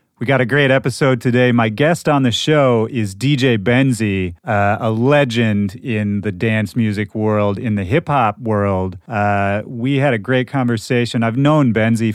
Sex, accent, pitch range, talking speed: male, American, 105-130 Hz, 175 wpm